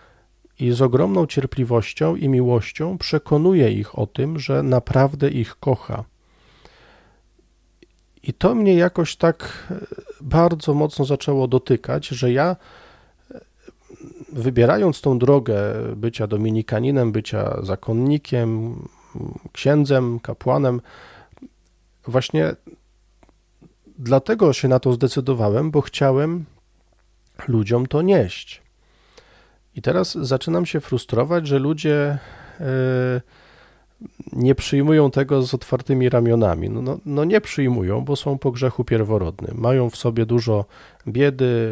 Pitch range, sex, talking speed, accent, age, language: 115-150 Hz, male, 105 wpm, native, 40-59, Polish